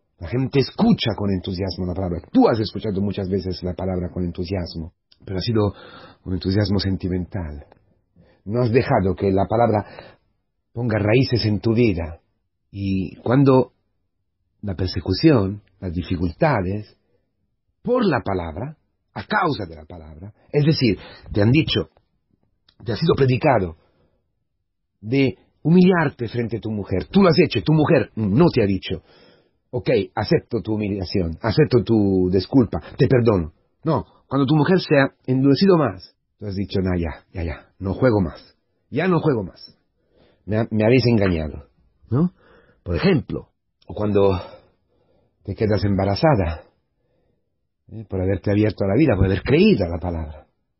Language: Spanish